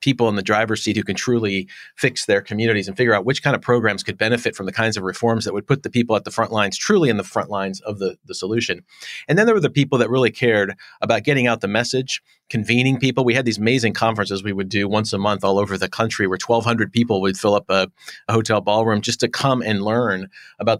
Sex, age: male, 40-59